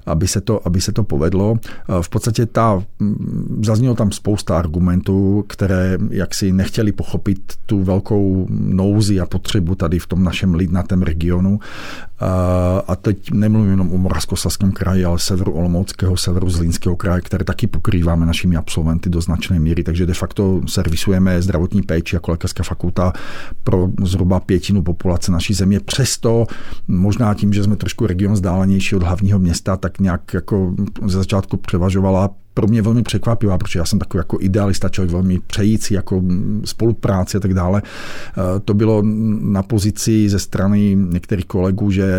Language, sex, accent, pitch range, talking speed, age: Czech, male, native, 90-105 Hz, 155 wpm, 50-69